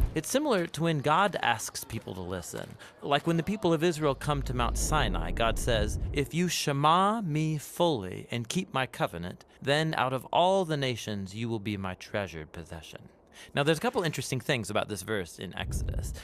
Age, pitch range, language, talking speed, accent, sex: 40-59, 110-160 Hz, English, 200 wpm, American, male